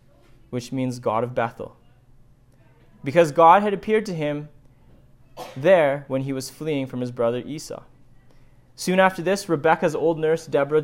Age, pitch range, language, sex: 20-39, 120-155 Hz, English, male